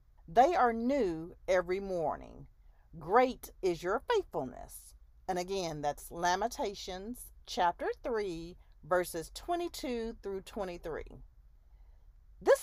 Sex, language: female, English